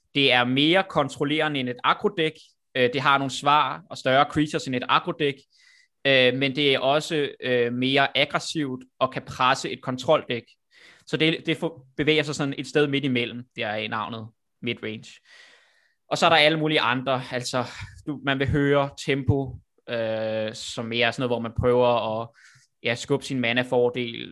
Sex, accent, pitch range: male, native, 120-140 Hz